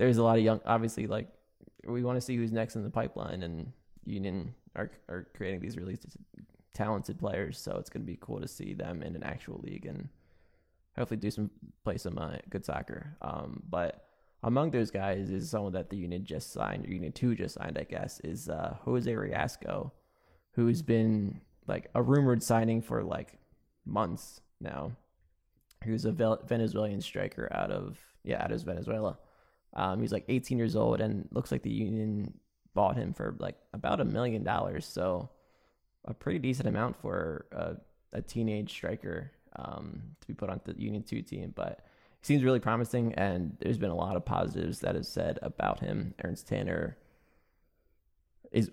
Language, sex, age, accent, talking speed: English, male, 20-39, American, 180 wpm